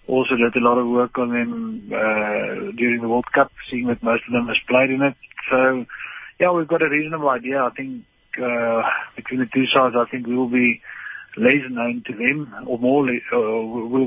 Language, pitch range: English, 120-135 Hz